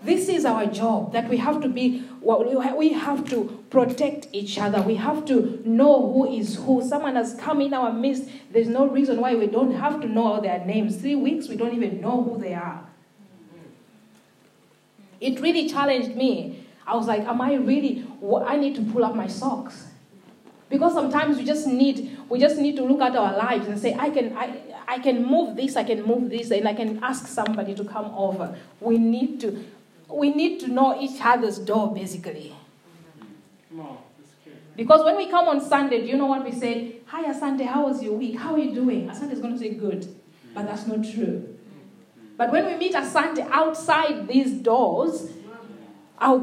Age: 30-49